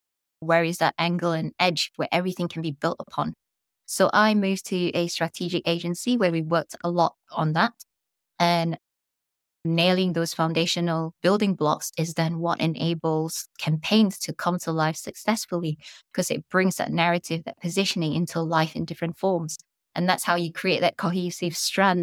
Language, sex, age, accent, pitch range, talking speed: English, female, 20-39, British, 165-185 Hz, 170 wpm